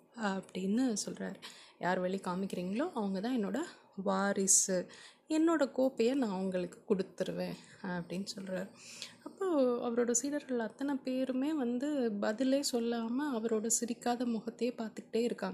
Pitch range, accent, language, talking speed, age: 200-260 Hz, Indian, English, 60 wpm, 20-39